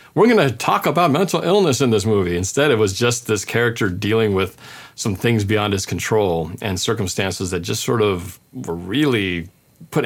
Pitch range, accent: 105-140 Hz, American